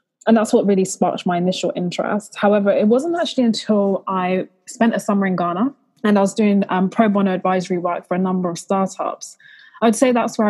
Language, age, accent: English, 20-39, British